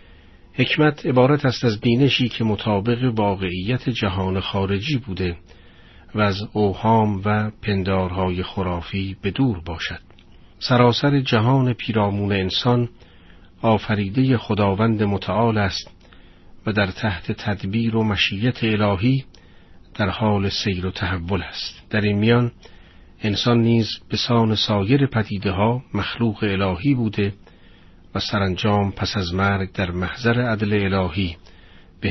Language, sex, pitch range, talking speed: Persian, male, 90-110 Hz, 120 wpm